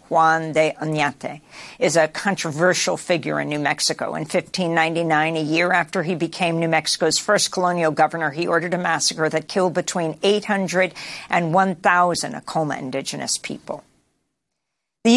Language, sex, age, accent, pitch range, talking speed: English, female, 50-69, American, 170-210 Hz, 140 wpm